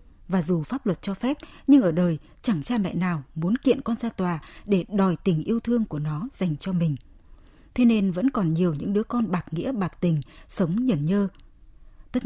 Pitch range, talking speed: 175-230 Hz, 215 wpm